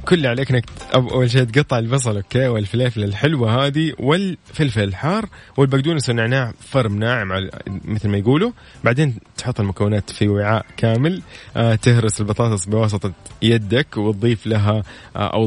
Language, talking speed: Arabic, 125 wpm